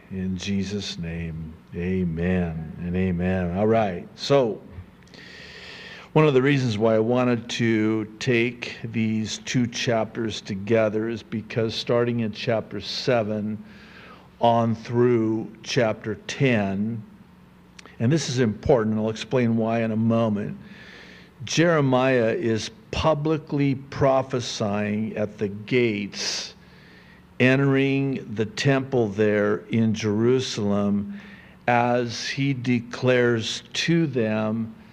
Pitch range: 110-135 Hz